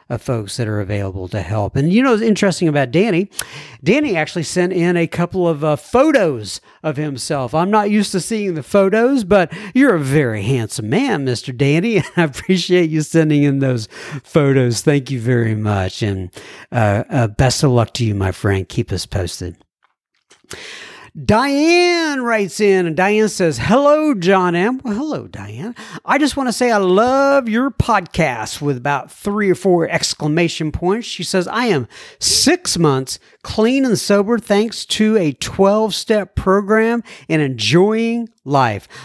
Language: English